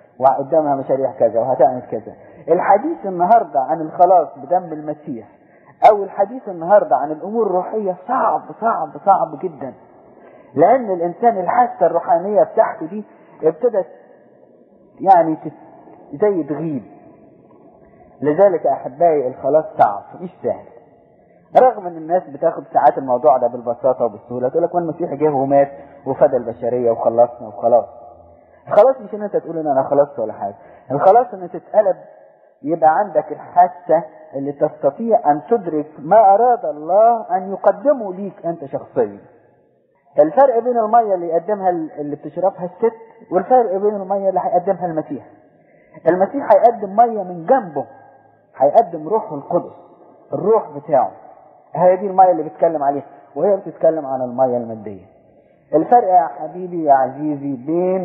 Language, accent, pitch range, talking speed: English, Lebanese, 150-210 Hz, 125 wpm